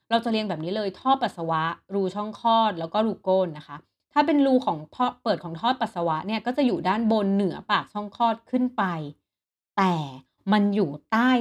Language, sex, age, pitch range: Thai, female, 30-49, 170-225 Hz